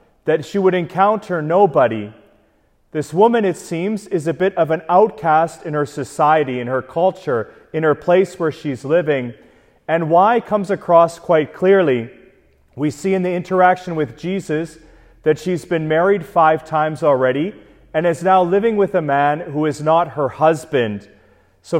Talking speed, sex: 165 wpm, male